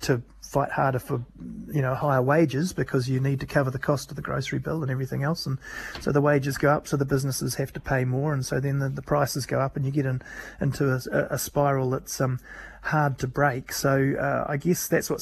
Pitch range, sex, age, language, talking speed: 130-145 Hz, male, 30-49, English, 240 wpm